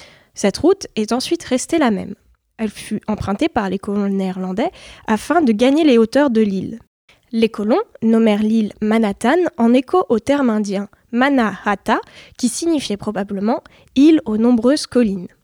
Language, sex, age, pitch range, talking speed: French, female, 10-29, 210-290 Hz, 155 wpm